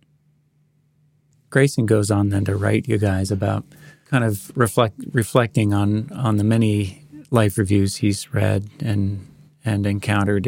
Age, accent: 40-59, American